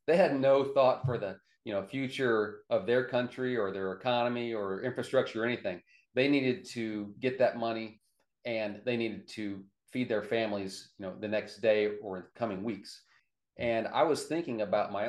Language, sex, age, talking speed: English, male, 40-59, 190 wpm